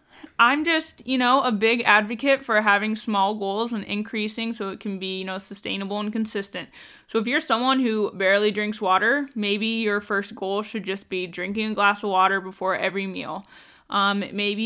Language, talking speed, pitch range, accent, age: English, 190 wpm, 195-225 Hz, American, 10-29